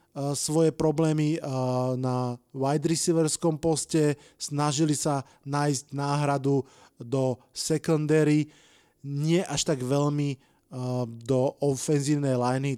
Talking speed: 90 wpm